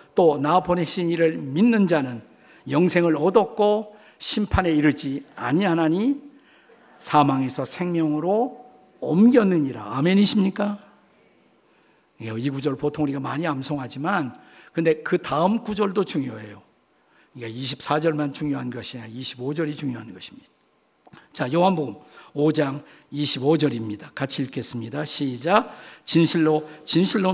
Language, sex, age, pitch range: Korean, male, 50-69, 140-185 Hz